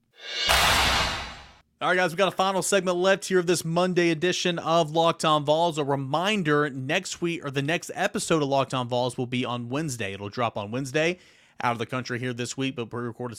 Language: English